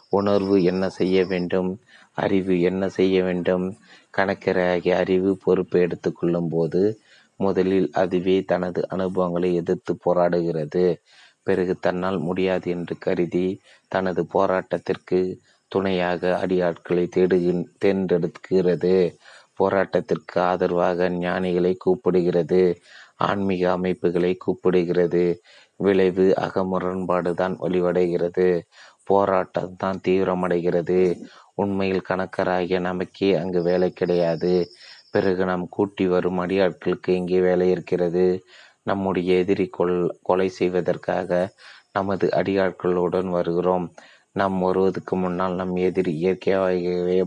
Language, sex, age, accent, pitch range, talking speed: Tamil, male, 30-49, native, 90-95 Hz, 90 wpm